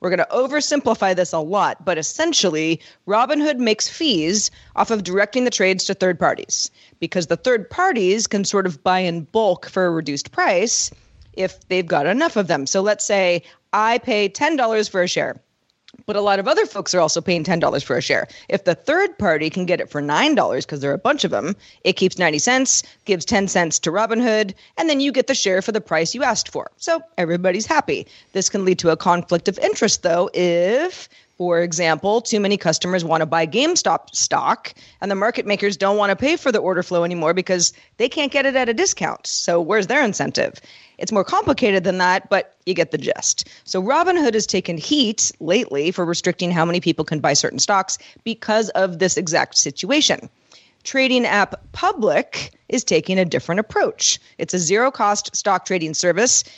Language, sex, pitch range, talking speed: English, female, 180-245 Hz, 200 wpm